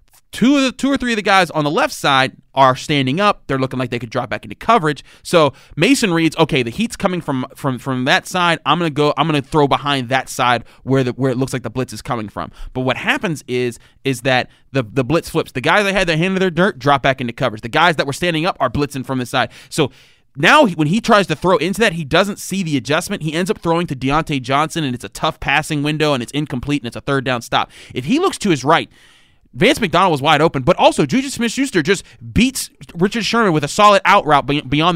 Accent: American